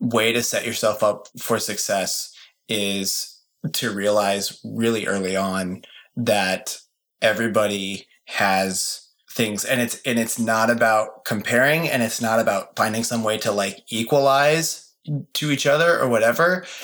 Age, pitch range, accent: 30-49, 110-130 Hz, American